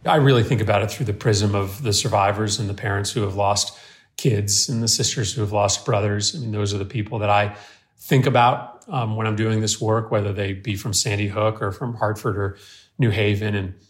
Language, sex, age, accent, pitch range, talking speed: English, male, 40-59, American, 105-125 Hz, 235 wpm